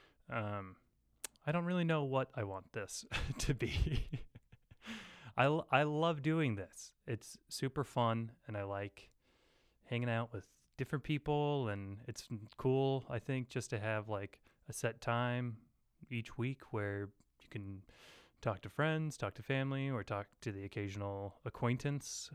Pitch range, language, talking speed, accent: 105-140 Hz, English, 150 wpm, American